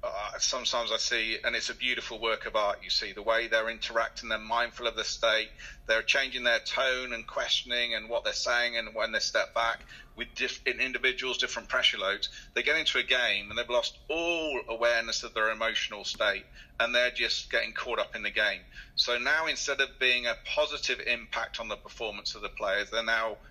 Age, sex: 40-59, male